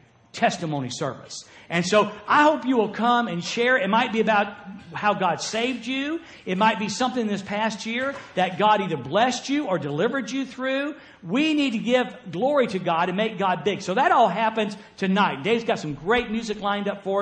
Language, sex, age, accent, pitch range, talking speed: English, male, 50-69, American, 165-225 Hz, 205 wpm